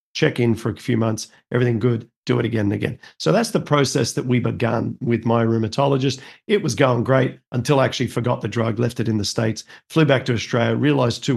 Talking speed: 230 wpm